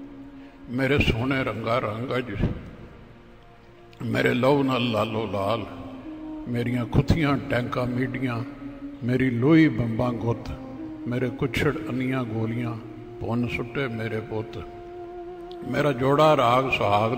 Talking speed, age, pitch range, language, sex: 100 wpm, 60-79, 120-140 Hz, Punjabi, male